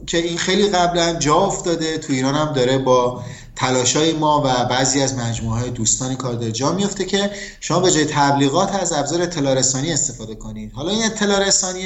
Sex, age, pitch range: male, 30-49, 125-165 Hz